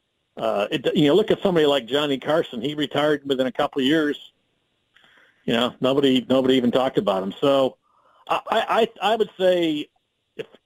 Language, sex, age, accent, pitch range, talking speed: English, male, 50-69, American, 125-160 Hz, 180 wpm